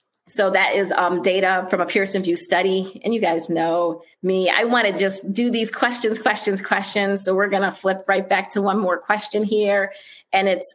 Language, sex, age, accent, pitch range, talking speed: English, female, 30-49, American, 195-275 Hz, 210 wpm